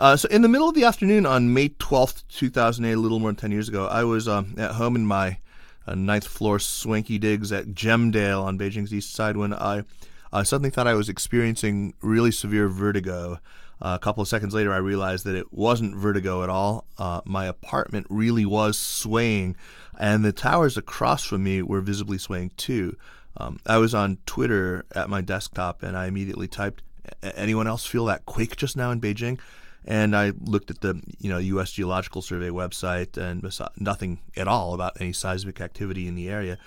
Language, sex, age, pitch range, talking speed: English, male, 30-49, 95-110 Hz, 200 wpm